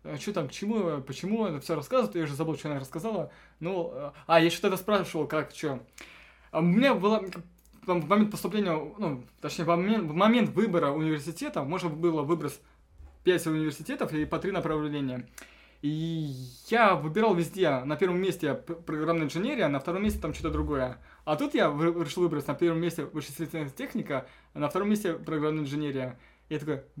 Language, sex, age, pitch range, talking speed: Russian, male, 20-39, 145-185 Hz, 170 wpm